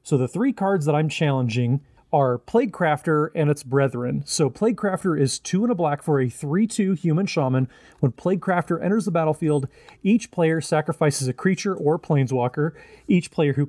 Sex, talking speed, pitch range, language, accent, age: male, 185 wpm, 135-170 Hz, English, American, 30-49